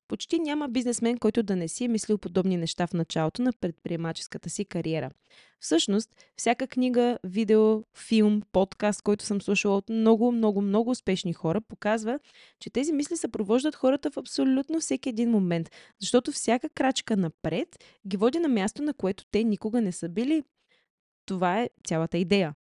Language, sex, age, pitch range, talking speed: Bulgarian, female, 20-39, 185-255 Hz, 165 wpm